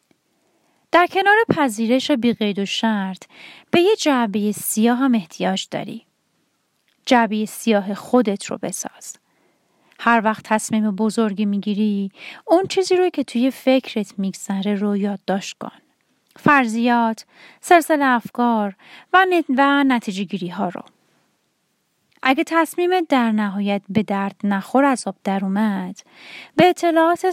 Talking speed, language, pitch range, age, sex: 120 wpm, Persian, 205-275 Hz, 30-49, female